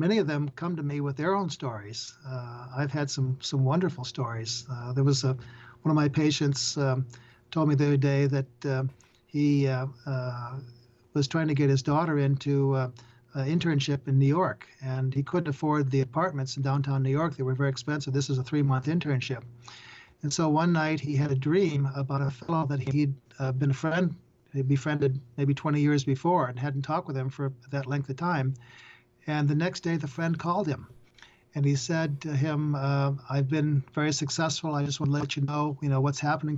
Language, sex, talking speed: English, male, 215 wpm